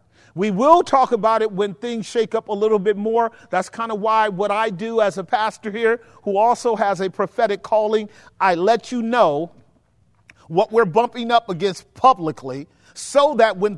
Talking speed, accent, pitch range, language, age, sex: 185 wpm, American, 185-230 Hz, English, 40-59, male